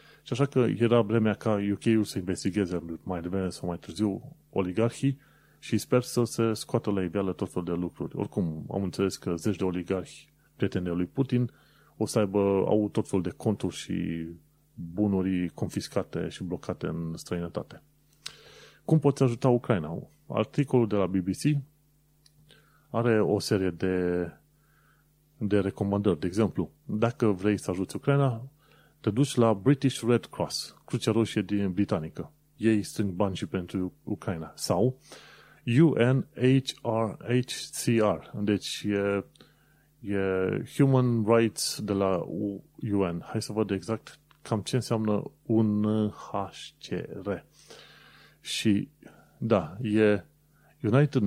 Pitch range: 95-130 Hz